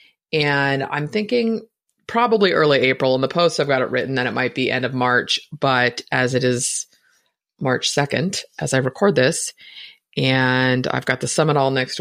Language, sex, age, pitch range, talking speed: English, female, 30-49, 130-185 Hz, 185 wpm